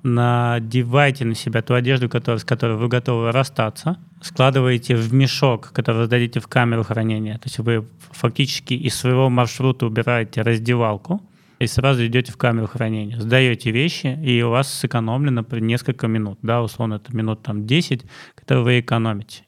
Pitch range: 115-130 Hz